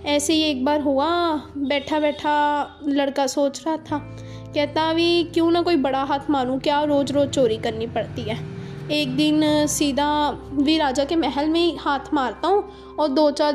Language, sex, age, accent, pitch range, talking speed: Hindi, female, 20-39, native, 275-330 Hz, 175 wpm